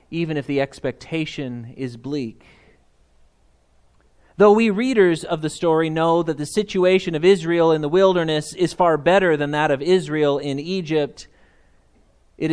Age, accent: 30-49, American